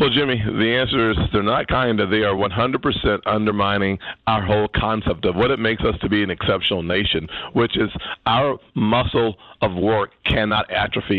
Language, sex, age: English, male, 50-69